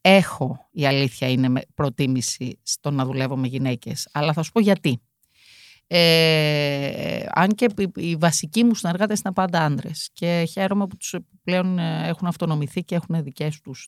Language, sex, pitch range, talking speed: Greek, female, 140-195 Hz, 150 wpm